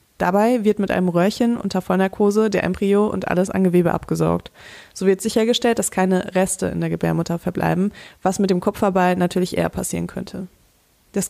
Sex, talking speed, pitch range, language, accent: female, 175 wpm, 180-215 Hz, German, German